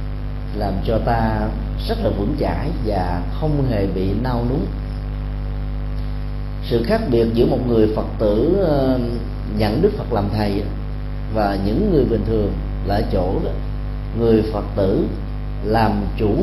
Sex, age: male, 40-59